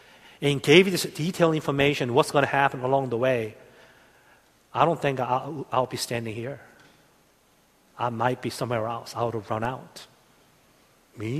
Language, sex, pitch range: Korean, male, 120-165 Hz